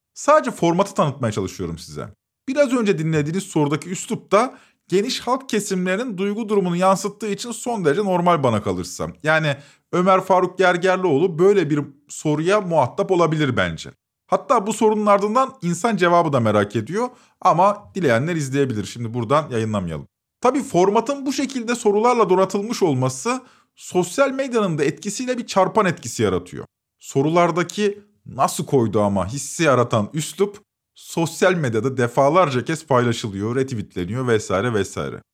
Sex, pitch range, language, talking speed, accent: male, 135-210 Hz, Turkish, 130 wpm, native